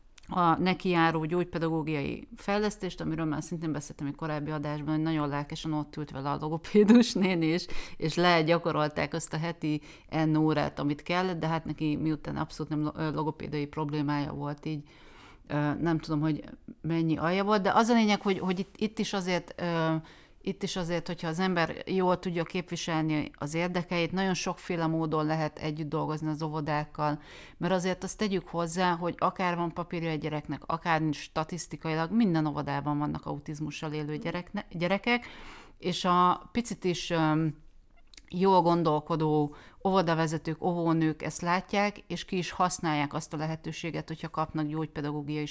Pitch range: 150-175 Hz